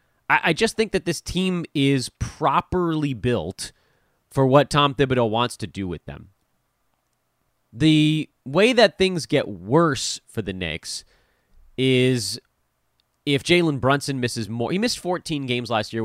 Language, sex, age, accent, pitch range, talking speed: English, male, 30-49, American, 110-150 Hz, 145 wpm